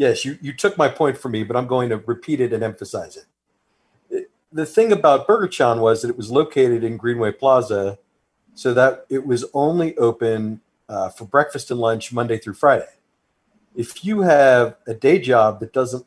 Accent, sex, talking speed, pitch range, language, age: American, male, 200 wpm, 110-130 Hz, English, 40-59